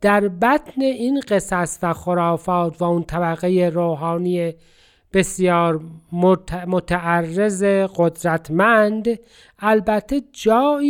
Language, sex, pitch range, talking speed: Persian, male, 165-220 Hz, 85 wpm